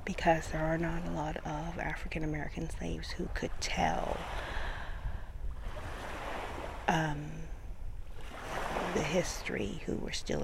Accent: American